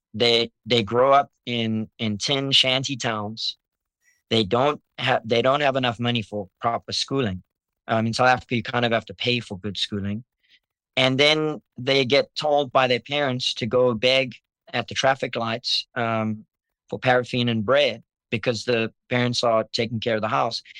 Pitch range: 120-140 Hz